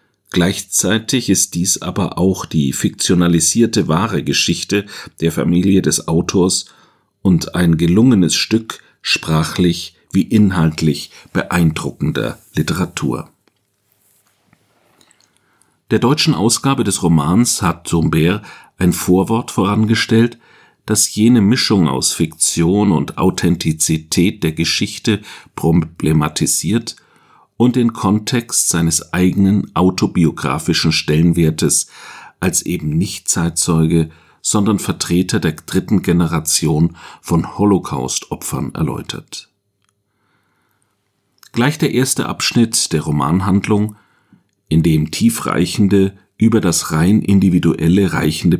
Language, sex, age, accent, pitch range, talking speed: German, male, 50-69, German, 85-105 Hz, 95 wpm